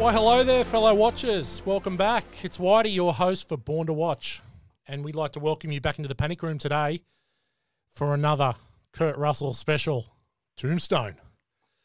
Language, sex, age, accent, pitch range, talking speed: English, male, 30-49, Australian, 135-170 Hz, 165 wpm